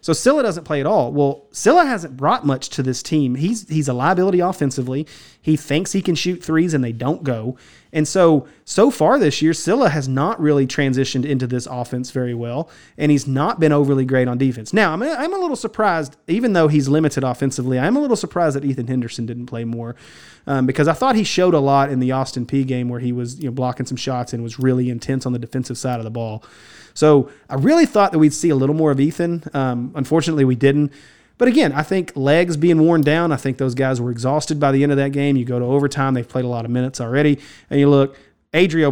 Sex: male